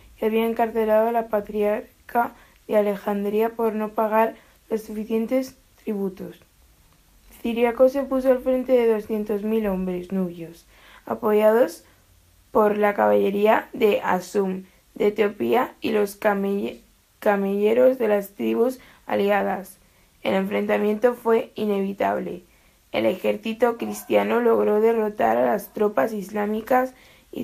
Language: Spanish